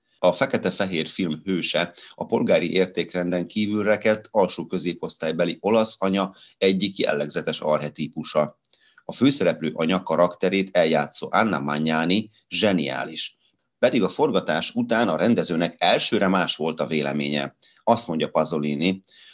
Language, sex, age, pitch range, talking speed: Hungarian, male, 30-49, 75-100 Hz, 110 wpm